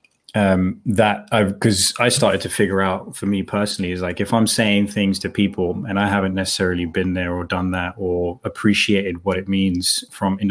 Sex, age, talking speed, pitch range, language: male, 20-39, 205 wpm, 90-100 Hz, English